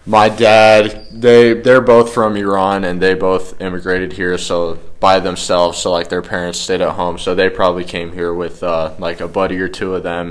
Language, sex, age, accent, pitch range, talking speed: English, male, 20-39, American, 85-95 Hz, 210 wpm